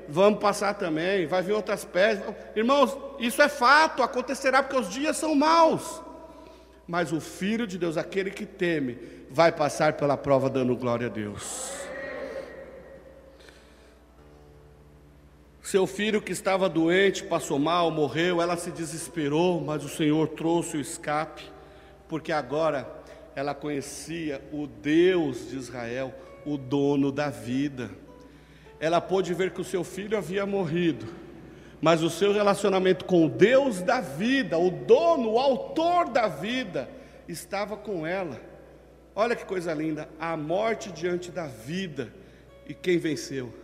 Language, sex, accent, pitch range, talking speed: Portuguese, male, Brazilian, 140-200 Hz, 140 wpm